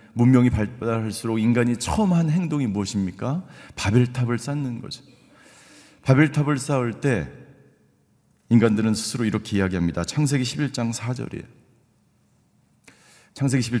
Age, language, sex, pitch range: 40-59, Korean, male, 105-140 Hz